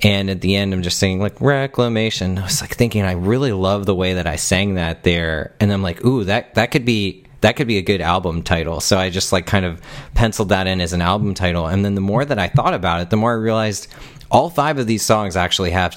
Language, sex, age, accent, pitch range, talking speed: English, male, 30-49, American, 95-115 Hz, 265 wpm